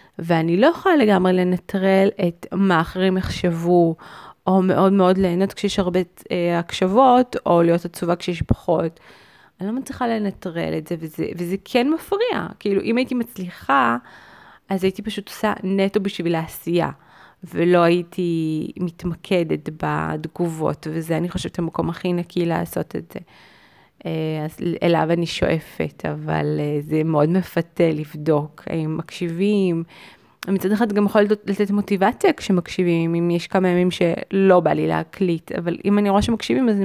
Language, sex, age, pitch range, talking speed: Hebrew, female, 20-39, 165-200 Hz, 145 wpm